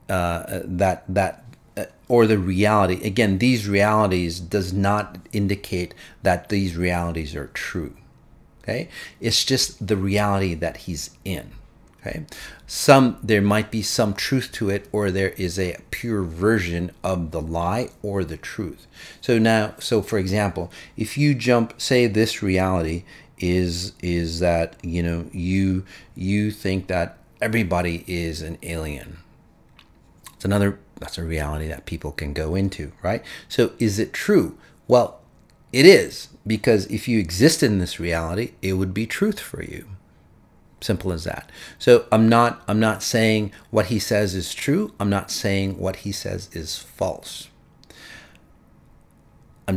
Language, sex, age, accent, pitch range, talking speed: English, male, 40-59, American, 85-110 Hz, 150 wpm